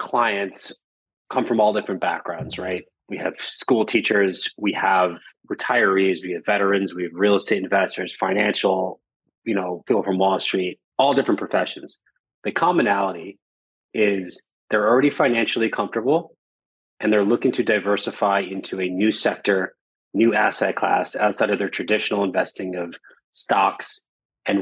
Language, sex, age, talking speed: English, male, 20-39, 145 wpm